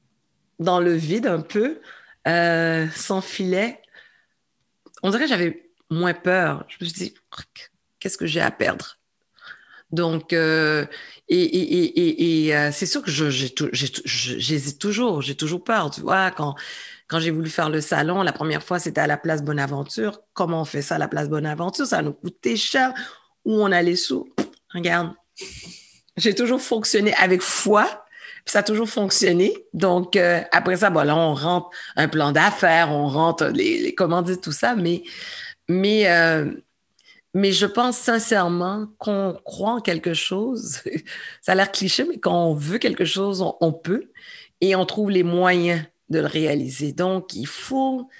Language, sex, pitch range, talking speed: English, female, 165-210 Hz, 175 wpm